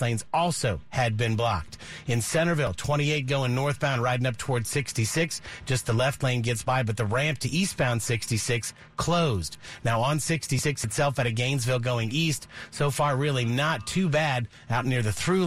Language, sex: English, male